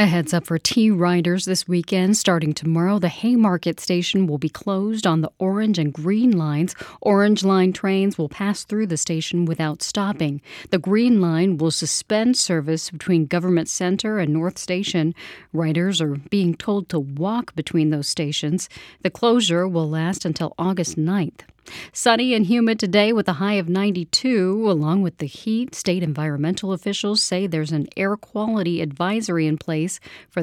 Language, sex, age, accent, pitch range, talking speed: English, female, 40-59, American, 165-210 Hz, 165 wpm